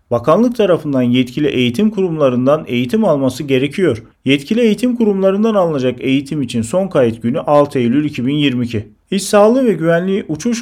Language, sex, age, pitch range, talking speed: Turkish, male, 40-59, 125-185 Hz, 140 wpm